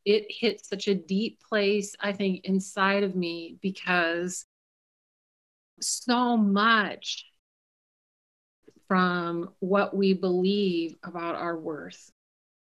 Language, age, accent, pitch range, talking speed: English, 40-59, American, 185-220 Hz, 100 wpm